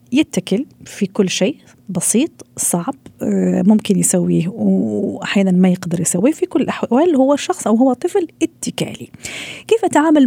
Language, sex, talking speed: Arabic, female, 135 wpm